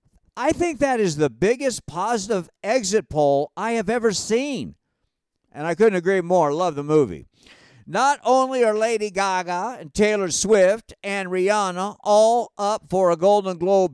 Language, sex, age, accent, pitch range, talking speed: English, male, 60-79, American, 165-225 Hz, 160 wpm